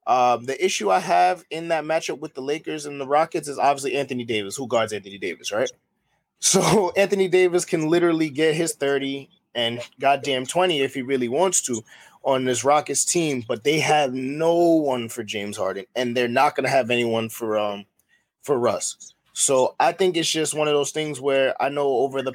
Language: English